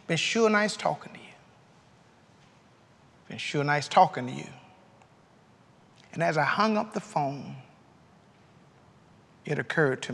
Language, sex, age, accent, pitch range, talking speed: English, male, 50-69, American, 135-175 Hz, 130 wpm